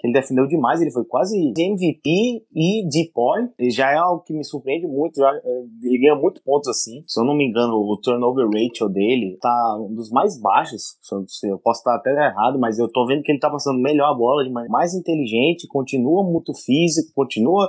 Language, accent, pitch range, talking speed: Portuguese, Brazilian, 120-165 Hz, 205 wpm